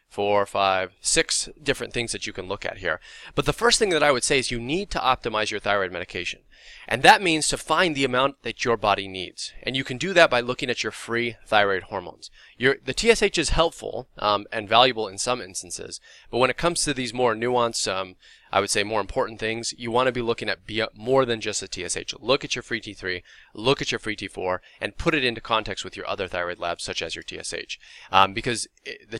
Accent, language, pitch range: American, English, 100-135 Hz